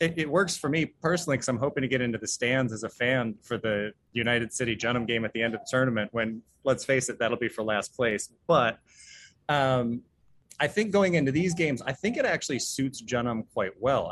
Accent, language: American, English